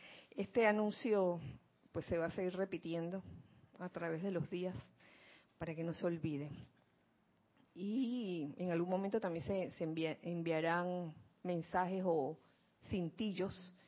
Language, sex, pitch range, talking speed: Spanish, female, 170-200 Hz, 125 wpm